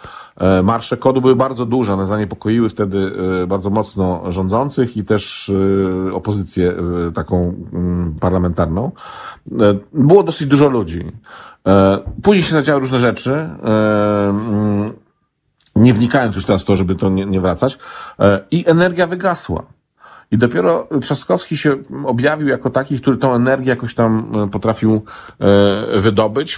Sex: male